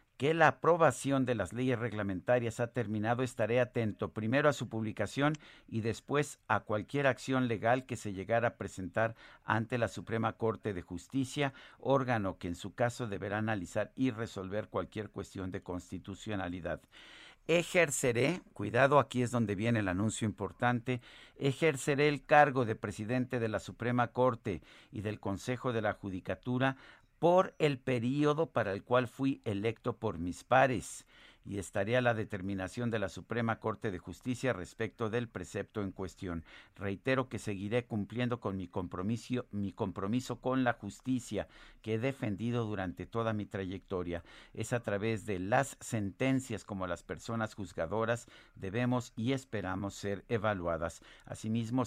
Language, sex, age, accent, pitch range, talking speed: Spanish, male, 50-69, Mexican, 100-125 Hz, 150 wpm